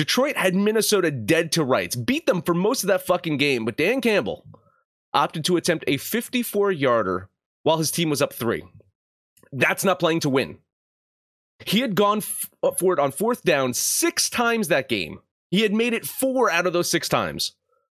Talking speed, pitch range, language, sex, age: 185 wpm, 135-205 Hz, English, male, 30-49